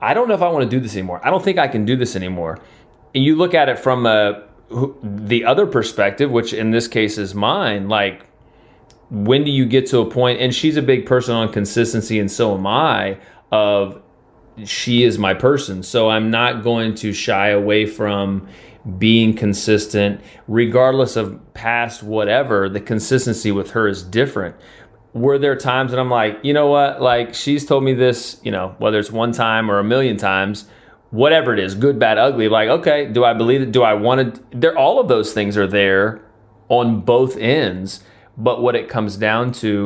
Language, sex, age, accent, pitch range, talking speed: English, male, 30-49, American, 105-125 Hz, 200 wpm